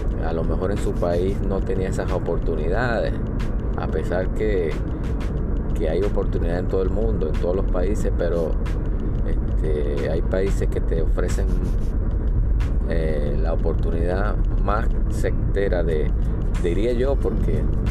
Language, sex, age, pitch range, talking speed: Spanish, male, 30-49, 90-110 Hz, 135 wpm